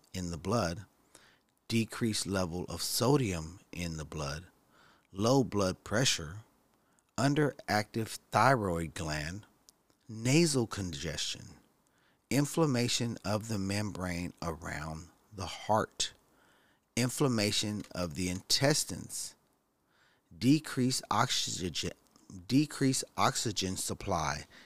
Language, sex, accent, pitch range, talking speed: English, male, American, 90-130 Hz, 85 wpm